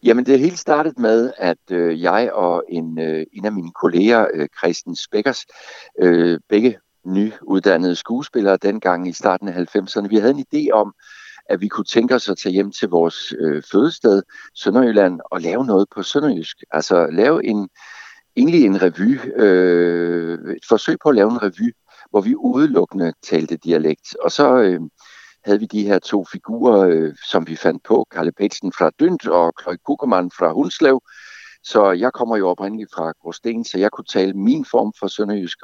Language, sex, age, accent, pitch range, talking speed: Danish, male, 60-79, native, 90-130 Hz, 180 wpm